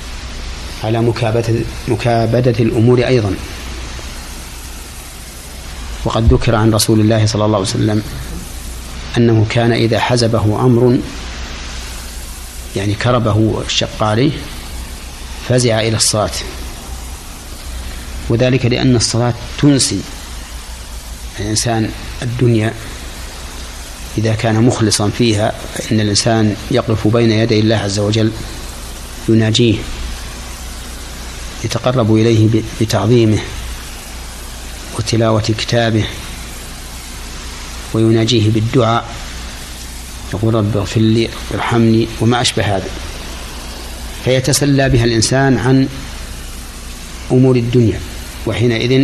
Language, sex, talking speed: Arabic, male, 80 wpm